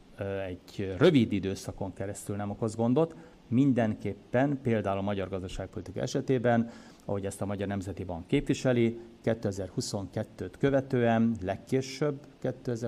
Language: Hungarian